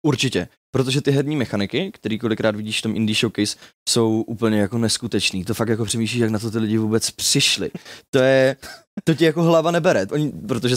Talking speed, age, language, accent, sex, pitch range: 195 wpm, 20-39, Czech, native, male, 105-130 Hz